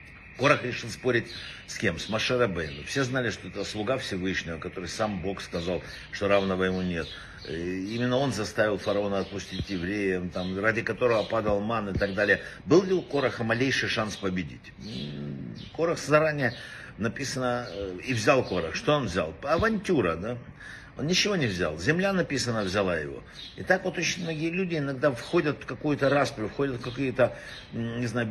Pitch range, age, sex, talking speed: 100-145 Hz, 60-79, male, 160 wpm